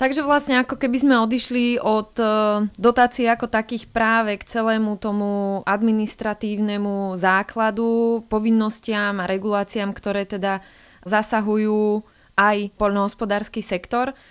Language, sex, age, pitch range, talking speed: Slovak, female, 20-39, 195-220 Hz, 105 wpm